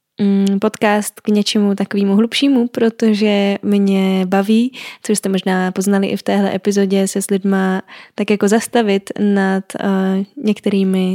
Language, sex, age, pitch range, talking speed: Czech, female, 10-29, 200-225 Hz, 130 wpm